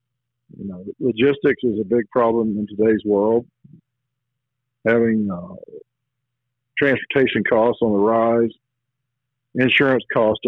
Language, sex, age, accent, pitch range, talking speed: English, male, 50-69, American, 115-130 Hz, 110 wpm